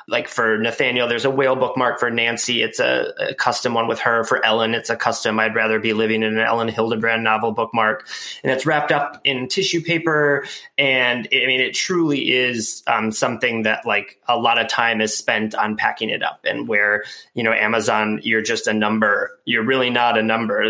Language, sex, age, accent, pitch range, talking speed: English, male, 20-39, American, 110-130 Hz, 210 wpm